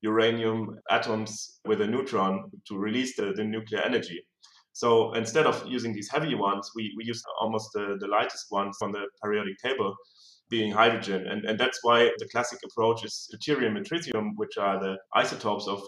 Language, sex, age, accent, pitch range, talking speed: English, male, 30-49, German, 105-125 Hz, 180 wpm